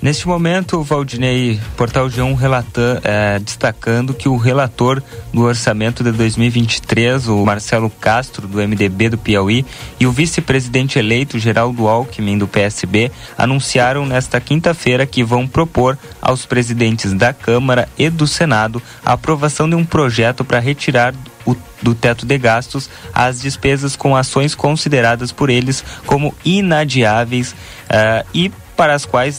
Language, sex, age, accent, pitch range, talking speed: Portuguese, male, 20-39, Brazilian, 115-135 Hz, 135 wpm